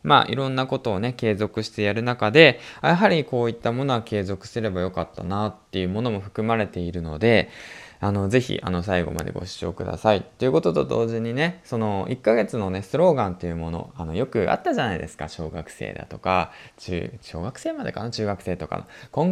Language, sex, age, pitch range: Japanese, male, 20-39, 90-120 Hz